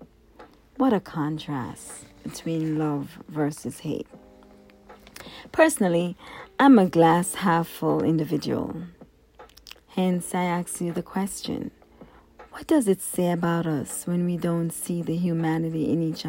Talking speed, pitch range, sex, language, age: 125 wpm, 155-205 Hz, female, English, 40-59